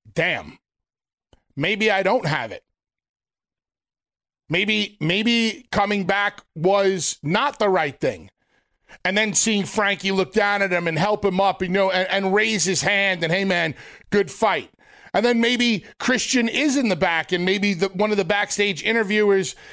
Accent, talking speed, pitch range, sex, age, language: American, 165 wpm, 185-230 Hz, male, 40-59, English